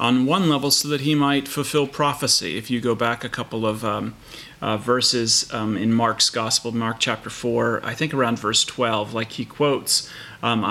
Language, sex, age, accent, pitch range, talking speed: English, male, 30-49, American, 120-140 Hz, 195 wpm